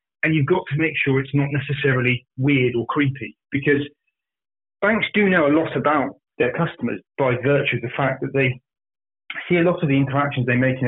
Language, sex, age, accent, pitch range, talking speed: English, male, 30-49, British, 125-160 Hz, 205 wpm